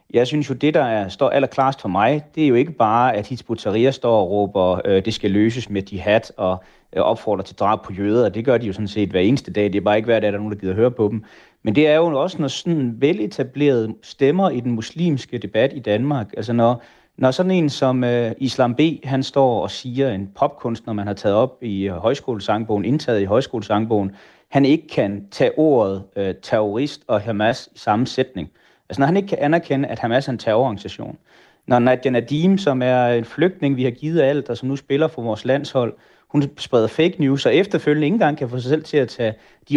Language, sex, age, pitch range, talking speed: Danish, male, 30-49, 105-140 Hz, 235 wpm